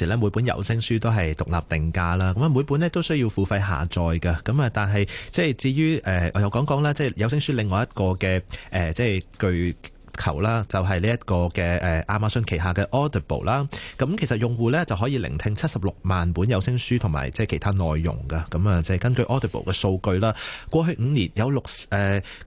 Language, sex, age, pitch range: Chinese, male, 30-49, 95-130 Hz